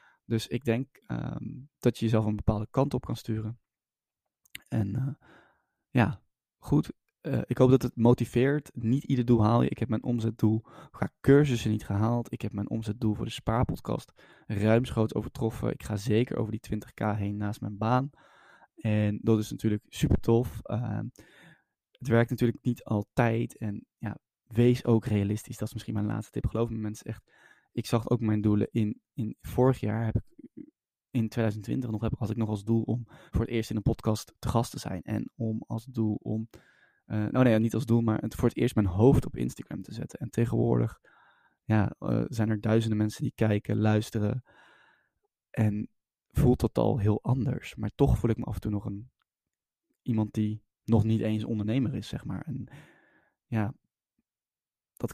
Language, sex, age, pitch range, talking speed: Dutch, male, 20-39, 105-120 Hz, 190 wpm